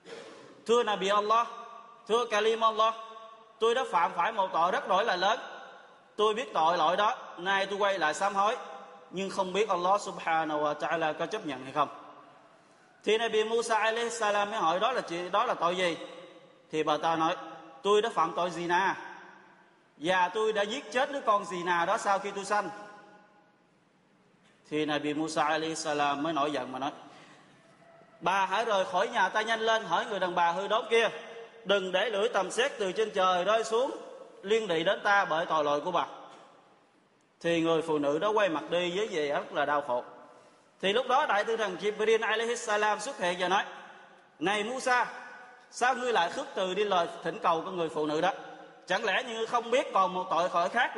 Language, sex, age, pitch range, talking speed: Vietnamese, male, 20-39, 170-225 Hz, 205 wpm